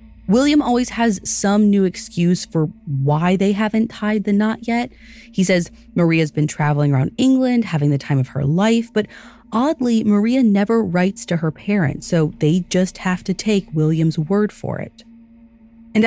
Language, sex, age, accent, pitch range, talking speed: English, female, 30-49, American, 160-235 Hz, 170 wpm